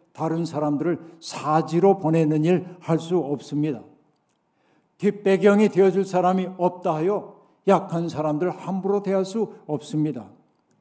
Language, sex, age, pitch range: Korean, male, 60-79, 165-200 Hz